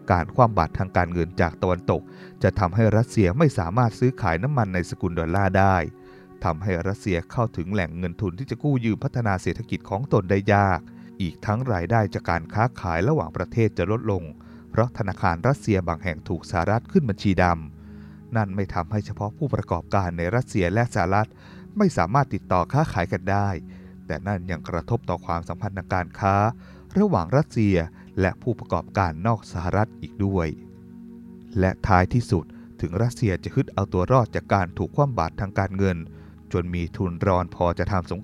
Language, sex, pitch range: Thai, male, 90-115 Hz